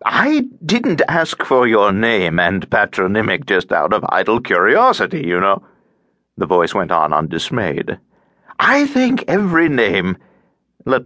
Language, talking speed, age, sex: English, 135 wpm, 60-79, male